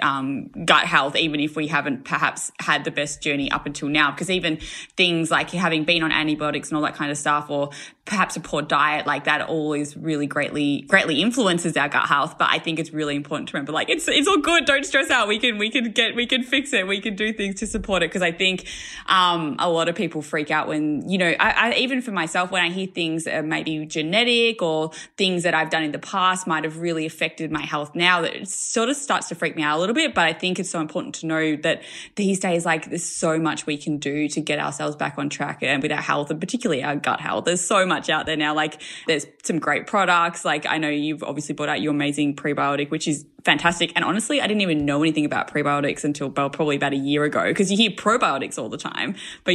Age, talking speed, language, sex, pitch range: 20-39, 255 wpm, English, female, 150-190 Hz